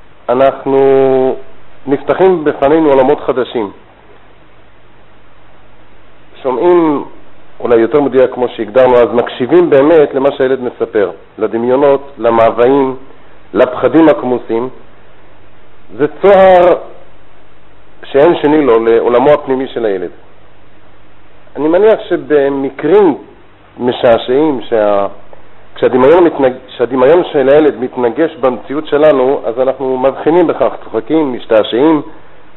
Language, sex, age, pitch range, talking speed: Hebrew, male, 50-69, 110-145 Hz, 90 wpm